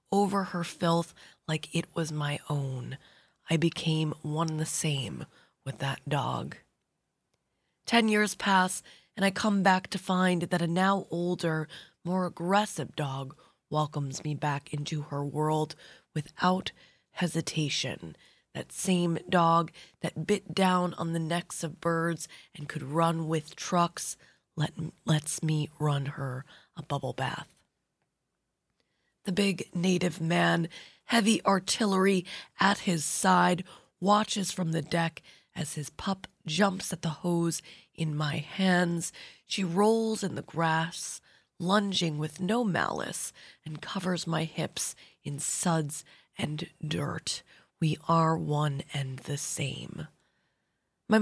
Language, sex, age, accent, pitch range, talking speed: English, female, 20-39, American, 155-185 Hz, 130 wpm